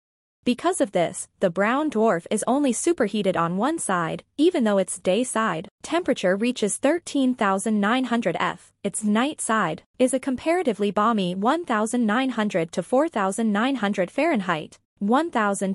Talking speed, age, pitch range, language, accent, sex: 125 wpm, 20-39, 200-270 Hz, English, American, female